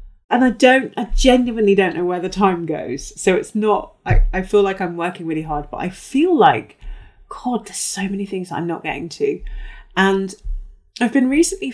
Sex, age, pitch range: female, 30-49, 165-230 Hz